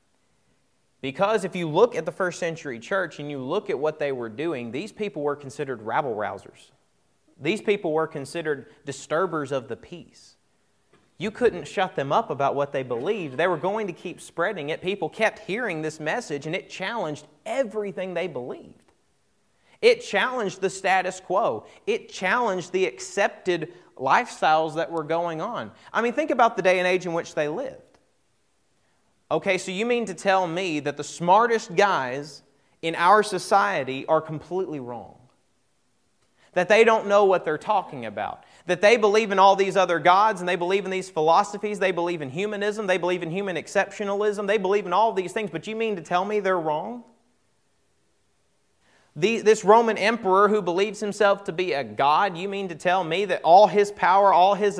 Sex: male